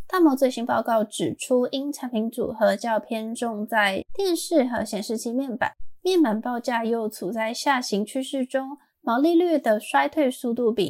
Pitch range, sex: 220-275 Hz, female